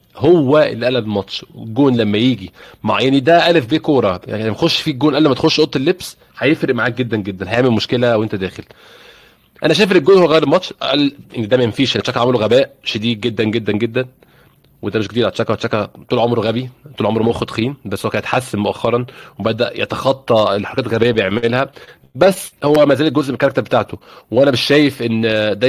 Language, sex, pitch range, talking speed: Arabic, male, 110-140 Hz, 190 wpm